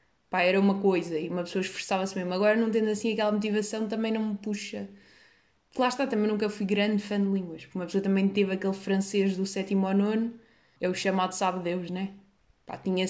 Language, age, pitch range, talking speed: Portuguese, 20-39, 190-230 Hz, 210 wpm